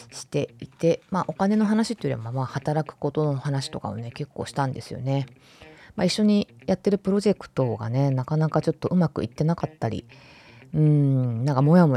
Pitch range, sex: 130-155 Hz, female